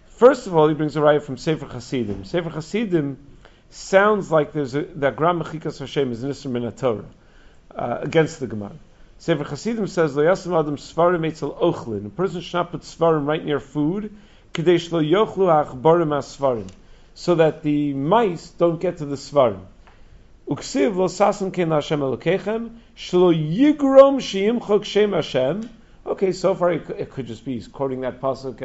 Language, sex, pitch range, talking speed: English, male, 135-190 Hz, 130 wpm